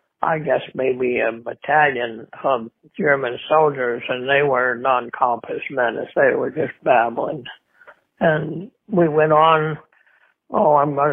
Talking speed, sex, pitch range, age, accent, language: 135 wpm, male, 130-165 Hz, 60-79, American, English